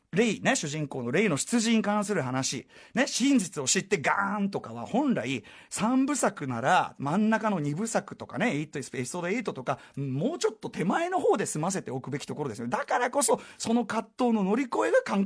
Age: 40-59